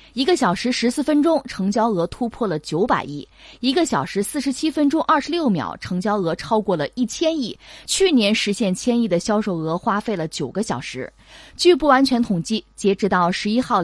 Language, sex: Chinese, female